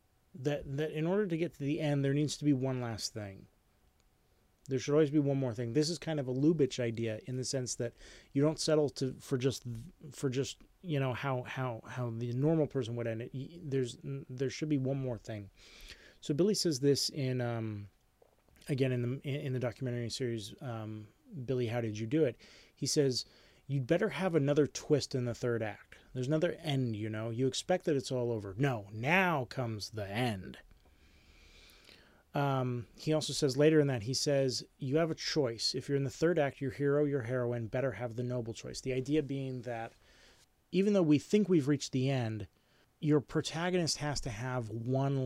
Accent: American